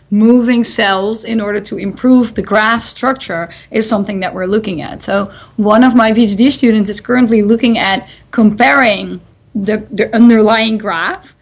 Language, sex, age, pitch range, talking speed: English, female, 20-39, 205-250 Hz, 160 wpm